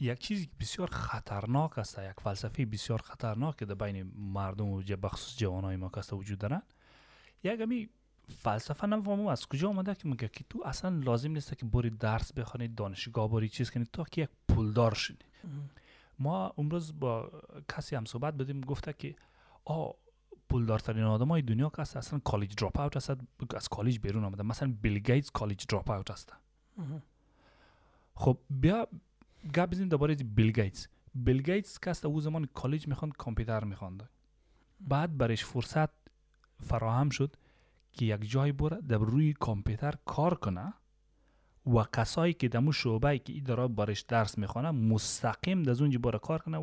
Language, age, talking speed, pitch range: Persian, 30-49, 150 wpm, 110-150 Hz